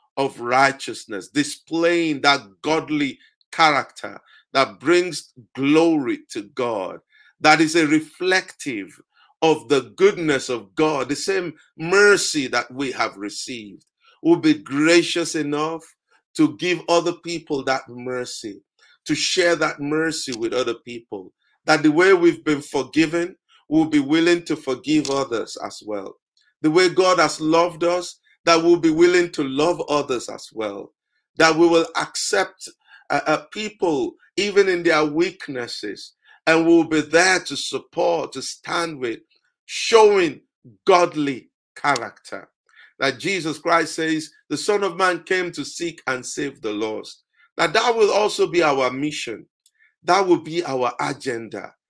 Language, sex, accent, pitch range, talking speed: English, male, Nigerian, 145-190 Hz, 145 wpm